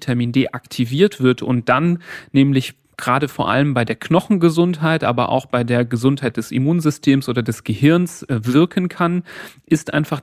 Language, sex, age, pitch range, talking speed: German, male, 40-59, 120-150 Hz, 160 wpm